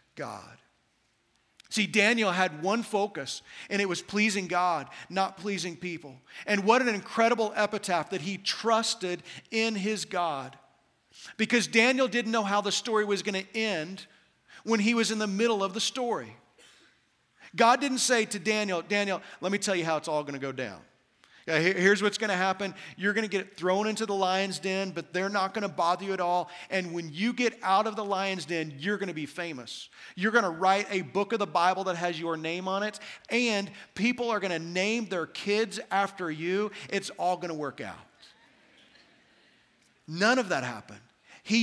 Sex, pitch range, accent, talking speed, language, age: male, 170-210 Hz, American, 195 wpm, English, 40-59